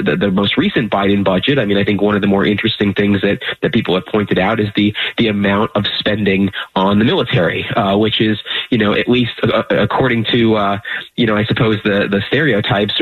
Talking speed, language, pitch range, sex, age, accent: 230 wpm, English, 100-115 Hz, male, 20-39, American